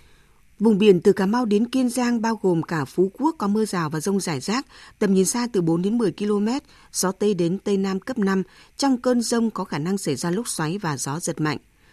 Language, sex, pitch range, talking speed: Vietnamese, female, 175-225 Hz, 245 wpm